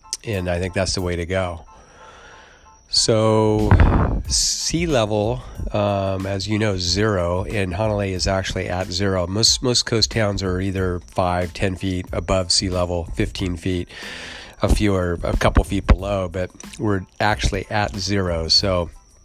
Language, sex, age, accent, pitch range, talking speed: English, male, 40-59, American, 90-100 Hz, 155 wpm